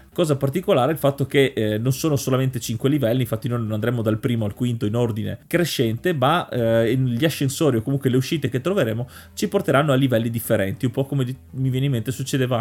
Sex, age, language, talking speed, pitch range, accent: male, 30-49, Italian, 220 wpm, 115-145 Hz, native